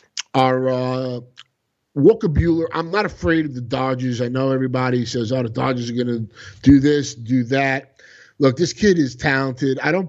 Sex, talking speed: male, 185 wpm